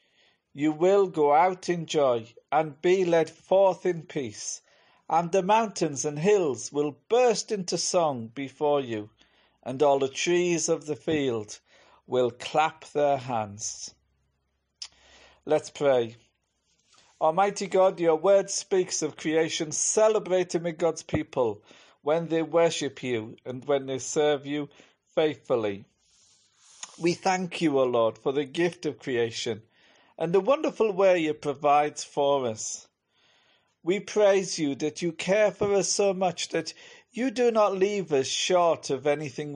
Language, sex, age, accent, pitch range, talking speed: English, male, 50-69, British, 135-185 Hz, 145 wpm